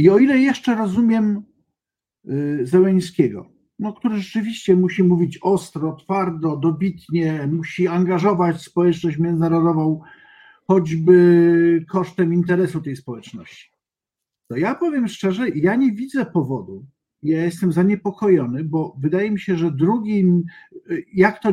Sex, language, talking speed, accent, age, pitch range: male, Polish, 115 wpm, native, 50-69, 155-205 Hz